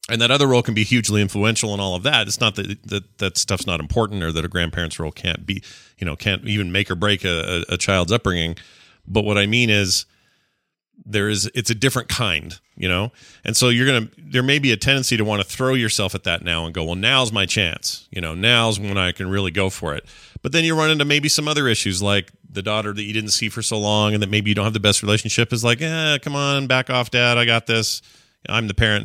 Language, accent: English, American